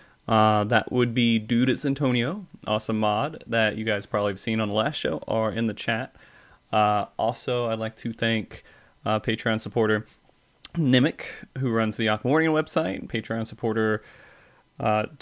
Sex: male